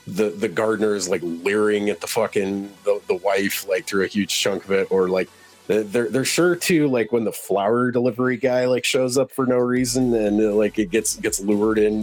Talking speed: 220 wpm